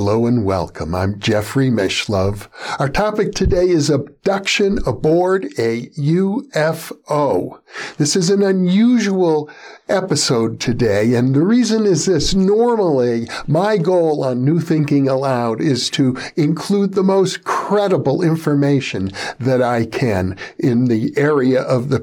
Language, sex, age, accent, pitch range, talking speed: English, male, 60-79, American, 130-180 Hz, 130 wpm